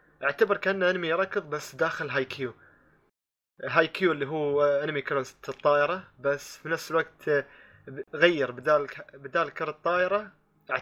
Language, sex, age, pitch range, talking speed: Arabic, male, 20-39, 130-165 Hz, 130 wpm